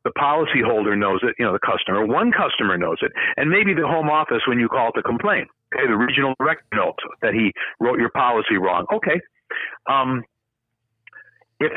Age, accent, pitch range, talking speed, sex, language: 60-79, American, 135-190 Hz, 190 wpm, male, English